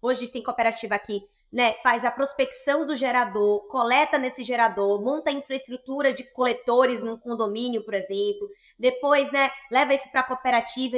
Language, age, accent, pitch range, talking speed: Portuguese, 20-39, Brazilian, 230-280 Hz, 160 wpm